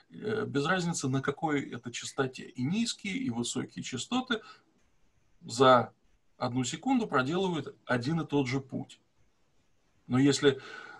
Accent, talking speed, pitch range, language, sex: native, 120 wpm, 120-145 Hz, Russian, male